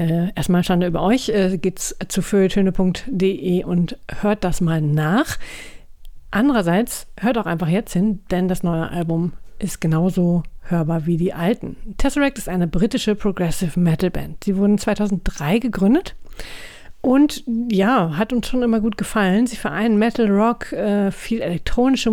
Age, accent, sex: 50-69, German, female